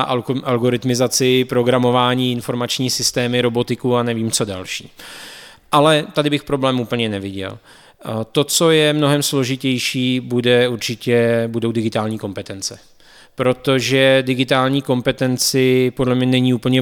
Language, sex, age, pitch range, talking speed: Czech, male, 20-39, 120-130 Hz, 115 wpm